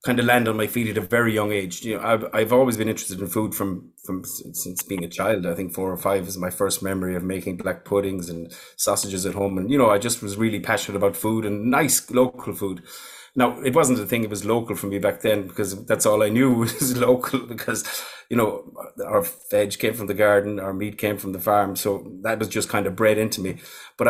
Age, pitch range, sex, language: 30-49, 100-115 Hz, male, English